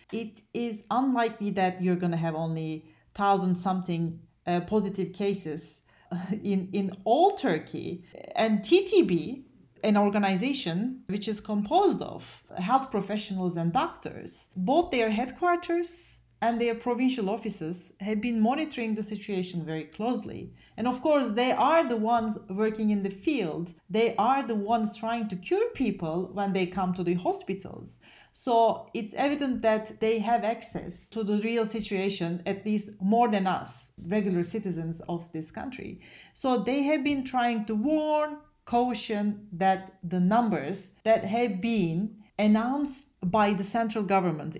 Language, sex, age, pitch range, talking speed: English, female, 40-59, 180-235 Hz, 145 wpm